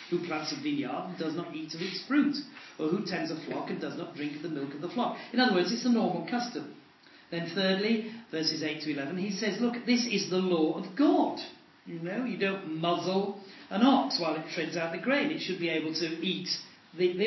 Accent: British